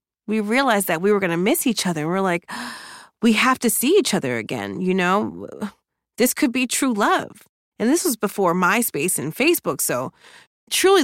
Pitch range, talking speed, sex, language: 180-275 Hz, 190 wpm, female, English